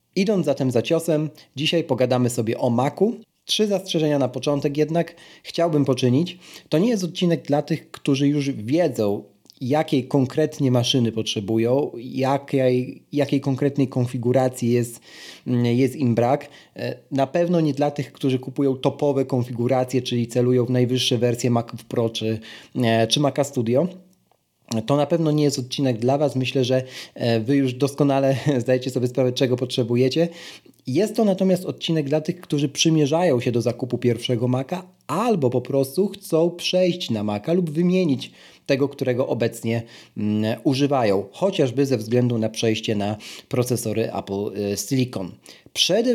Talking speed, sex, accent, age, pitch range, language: 145 wpm, male, native, 30-49, 120-155 Hz, Polish